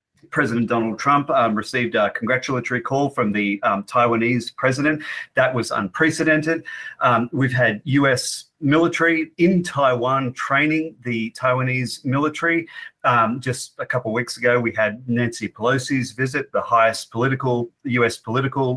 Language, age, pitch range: English, 40-59, 120-150 Hz